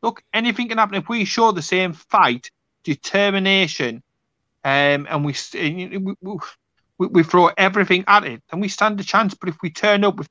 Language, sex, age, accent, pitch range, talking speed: English, male, 30-49, British, 140-190 Hz, 180 wpm